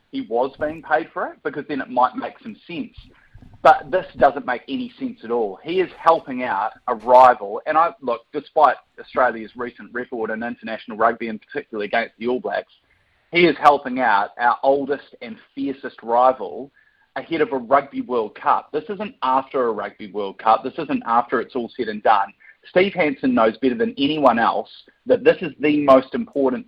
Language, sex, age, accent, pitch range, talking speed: English, male, 30-49, Australian, 120-160 Hz, 195 wpm